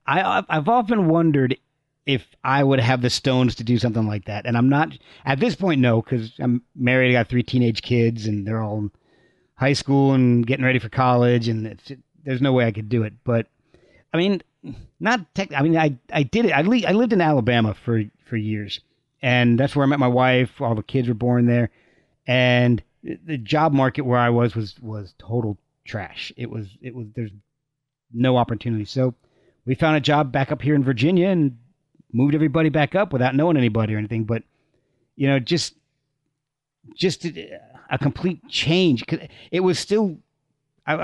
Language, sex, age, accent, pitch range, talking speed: English, male, 40-59, American, 120-150 Hz, 195 wpm